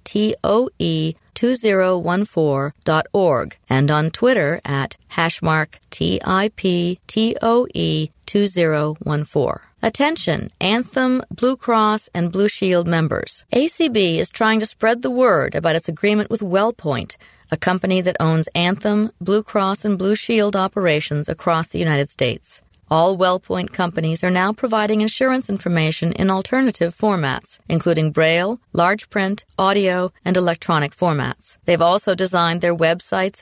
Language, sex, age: English, female, 40-59